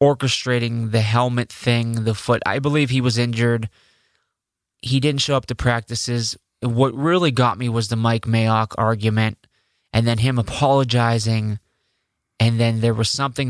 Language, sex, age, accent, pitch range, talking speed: English, male, 20-39, American, 110-125 Hz, 150 wpm